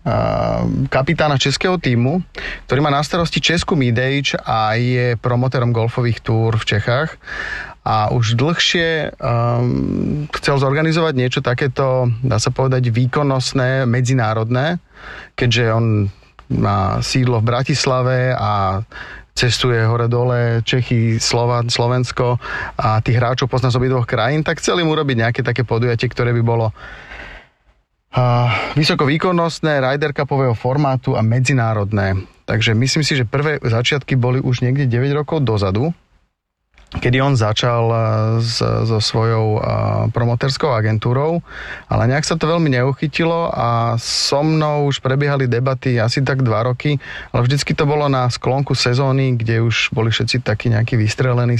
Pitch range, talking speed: 115-135 Hz, 130 wpm